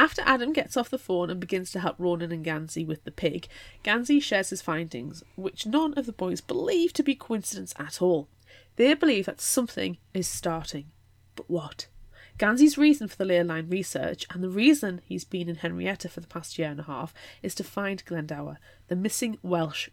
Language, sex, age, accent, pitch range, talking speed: English, female, 20-39, British, 160-225 Hz, 200 wpm